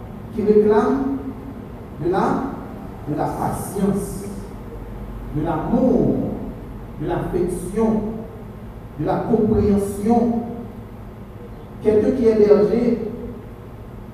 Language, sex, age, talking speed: French, male, 60-79, 75 wpm